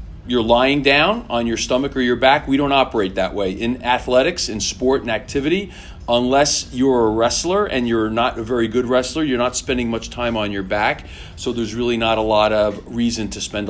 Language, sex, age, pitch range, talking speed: English, male, 40-59, 100-125 Hz, 215 wpm